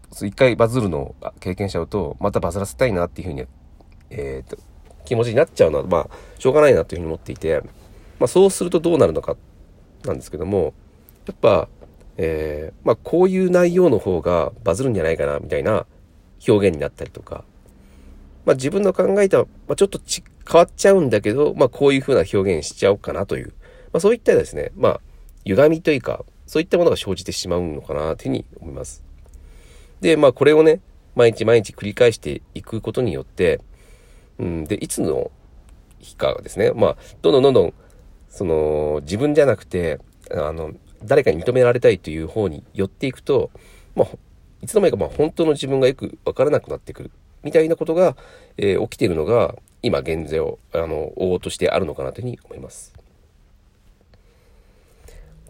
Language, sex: Japanese, male